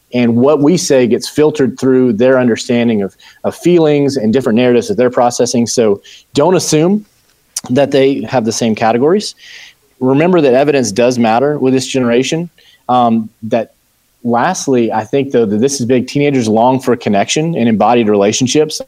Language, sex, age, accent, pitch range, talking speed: English, male, 30-49, American, 115-140 Hz, 165 wpm